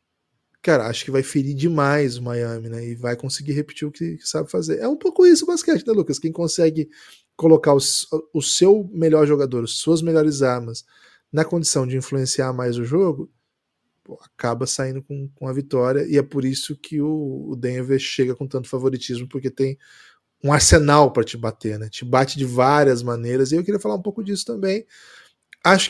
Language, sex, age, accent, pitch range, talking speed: Portuguese, male, 20-39, Brazilian, 130-160 Hz, 200 wpm